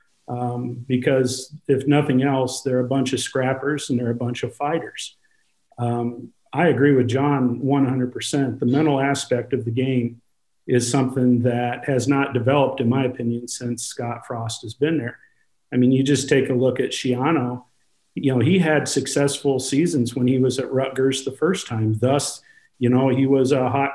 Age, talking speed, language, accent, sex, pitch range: 50-69, 185 wpm, English, American, male, 125-140 Hz